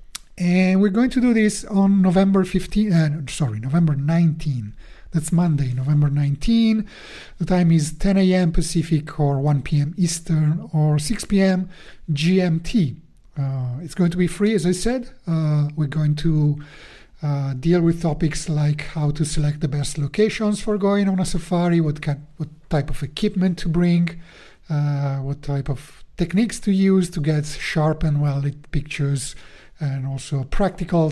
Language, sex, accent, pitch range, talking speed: English, male, Italian, 145-175 Hz, 160 wpm